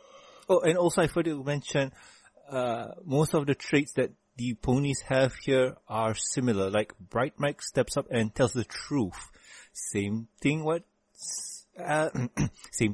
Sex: male